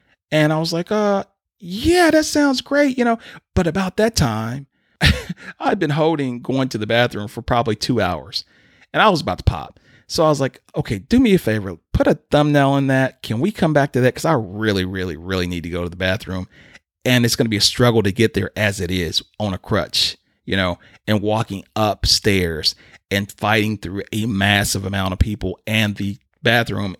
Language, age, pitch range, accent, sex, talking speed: English, 40-59, 95-140 Hz, American, male, 210 wpm